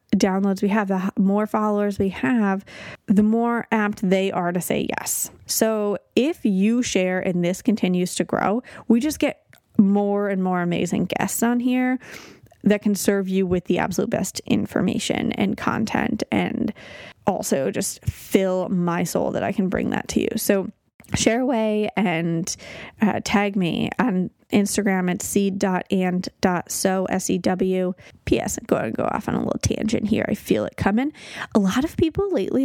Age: 20-39